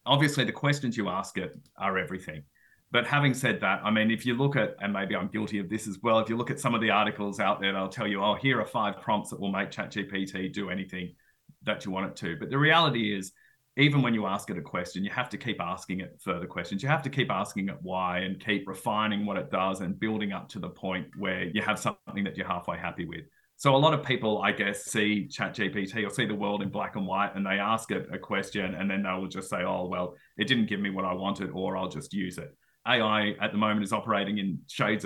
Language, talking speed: English, 260 wpm